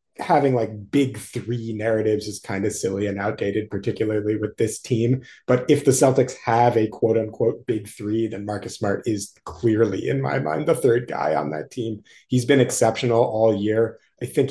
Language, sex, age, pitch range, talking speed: English, male, 30-49, 110-135 Hz, 190 wpm